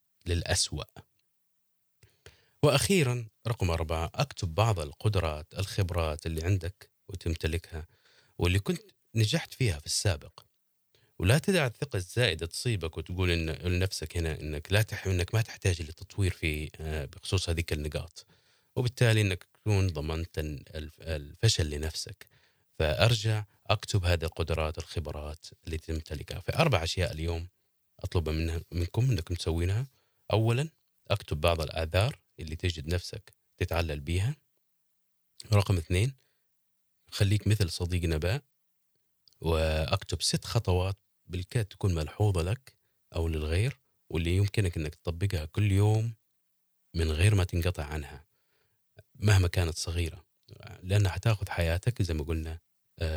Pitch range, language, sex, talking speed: 80-105 Hz, Arabic, male, 115 wpm